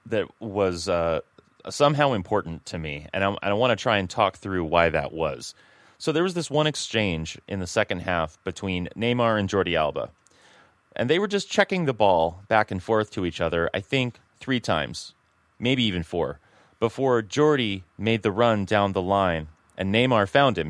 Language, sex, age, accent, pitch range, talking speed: English, male, 30-49, American, 90-125 Hz, 190 wpm